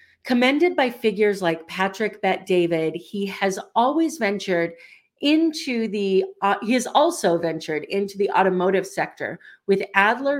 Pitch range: 180-250 Hz